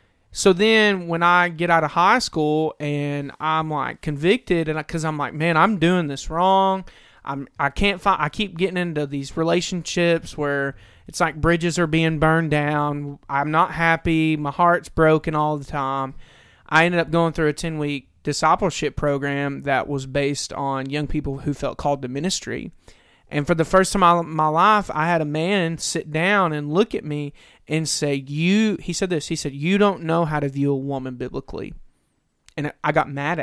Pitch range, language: 145-175 Hz, English